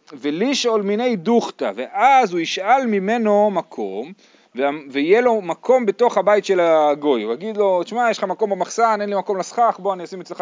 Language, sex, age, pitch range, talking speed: Hebrew, male, 30-49, 150-225 Hz, 180 wpm